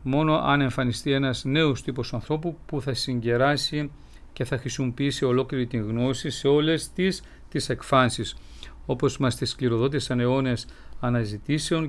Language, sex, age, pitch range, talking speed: Greek, male, 50-69, 120-150 Hz, 135 wpm